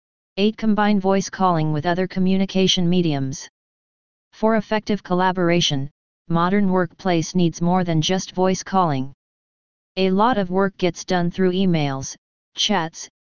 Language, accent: English, American